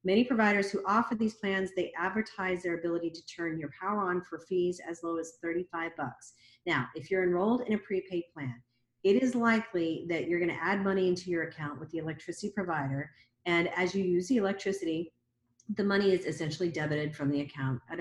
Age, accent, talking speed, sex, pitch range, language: 40-59, American, 200 wpm, female, 150-185 Hz, English